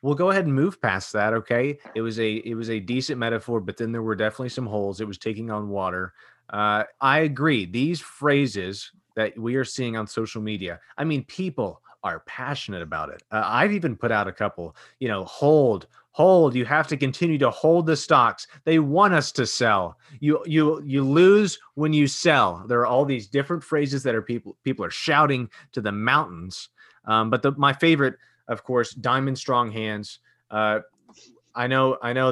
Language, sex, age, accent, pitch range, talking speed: English, male, 30-49, American, 110-140 Hz, 200 wpm